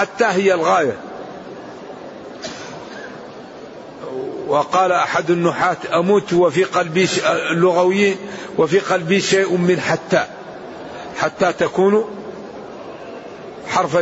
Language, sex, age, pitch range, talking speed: Arabic, male, 50-69, 175-200 Hz, 75 wpm